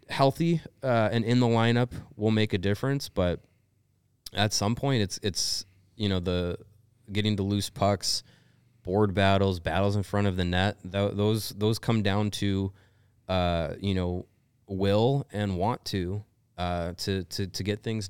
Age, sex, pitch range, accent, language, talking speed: 20-39, male, 95-110 Hz, American, English, 165 wpm